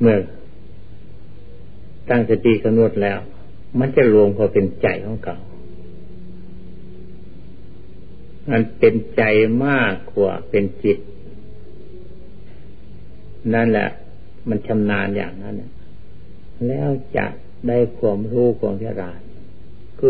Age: 60-79